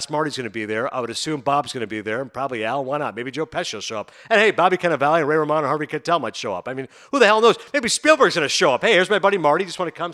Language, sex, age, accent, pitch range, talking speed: English, male, 50-69, American, 140-185 Hz, 345 wpm